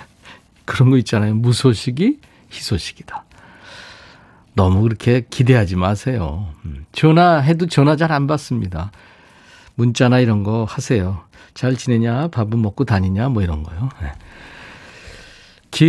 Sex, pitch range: male, 110-150 Hz